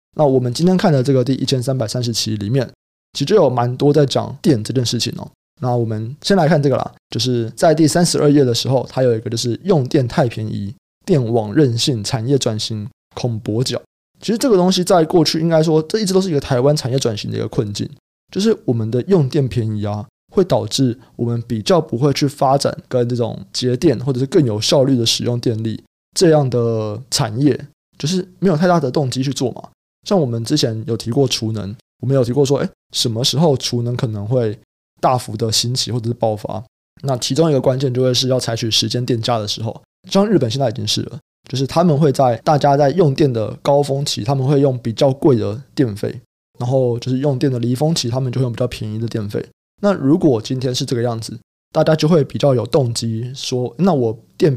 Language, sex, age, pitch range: Chinese, male, 20-39, 115-145 Hz